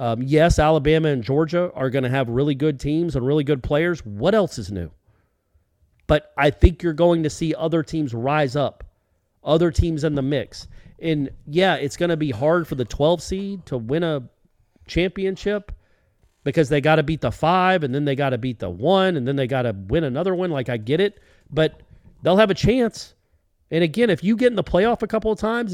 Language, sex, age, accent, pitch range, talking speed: English, male, 40-59, American, 115-175 Hz, 220 wpm